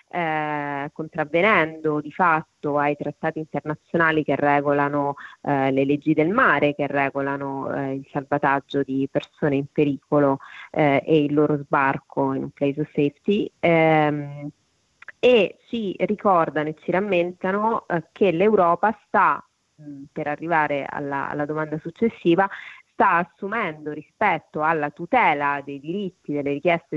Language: Italian